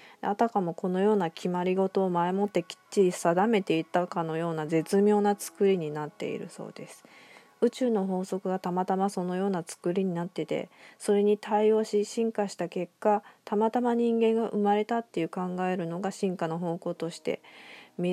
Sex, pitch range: female, 165-205 Hz